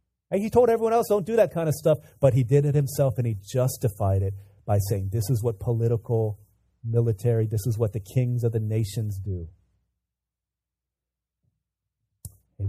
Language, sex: English, male